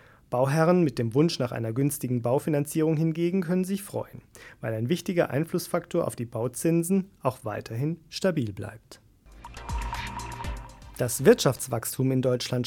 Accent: German